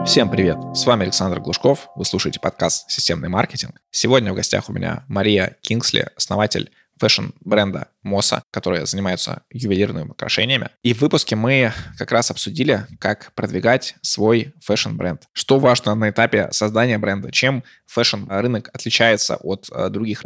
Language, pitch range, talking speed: Russian, 100-115 Hz, 140 wpm